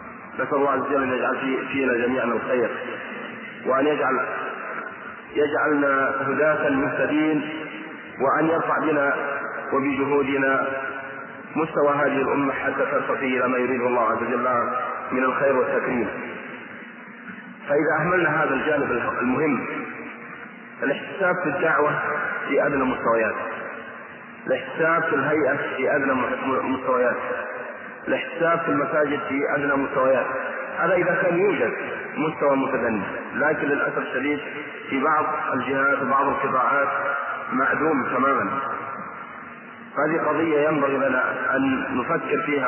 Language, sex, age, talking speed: Arabic, male, 30-49, 110 wpm